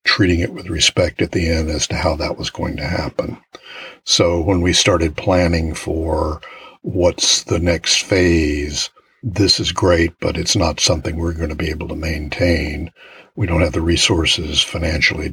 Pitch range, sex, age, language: 85-95 Hz, male, 60-79, English